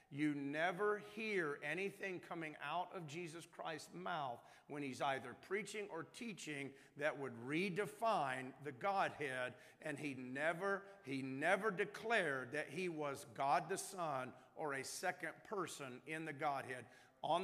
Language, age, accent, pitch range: English, 50-69, American, 145-185 Hz